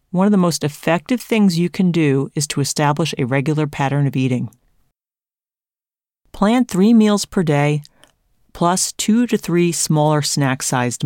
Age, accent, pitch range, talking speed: 40-59, American, 140-190 Hz, 150 wpm